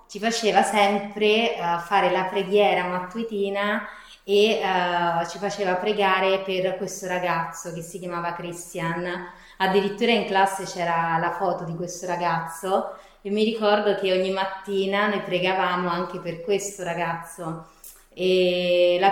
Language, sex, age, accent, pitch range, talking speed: Italian, female, 20-39, native, 175-200 Hz, 135 wpm